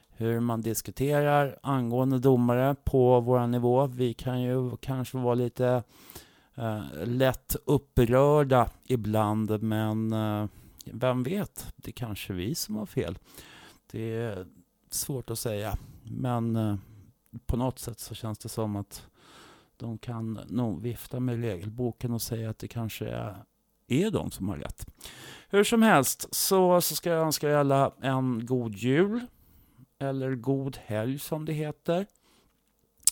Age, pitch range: 30-49, 115-140 Hz